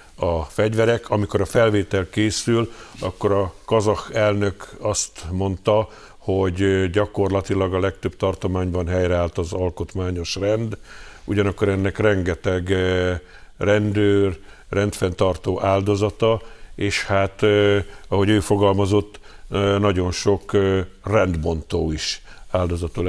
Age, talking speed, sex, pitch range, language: 50-69, 95 wpm, male, 90-105 Hz, Hungarian